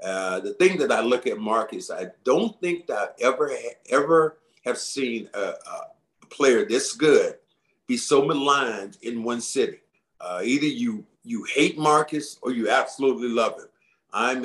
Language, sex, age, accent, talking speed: English, male, 50-69, American, 165 wpm